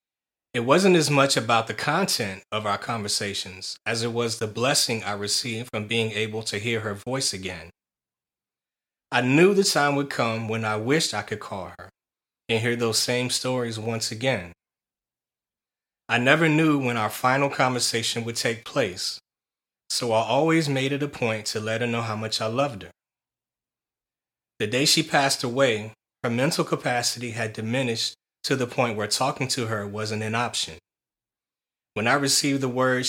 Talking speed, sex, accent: 175 wpm, male, American